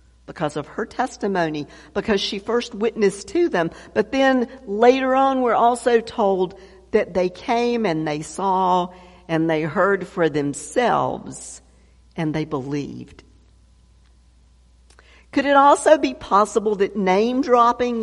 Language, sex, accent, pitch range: English, female, American, 155-215 Hz